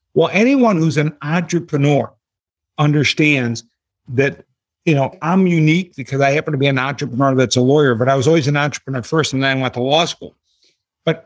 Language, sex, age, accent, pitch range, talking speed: English, male, 50-69, American, 130-155 Hz, 190 wpm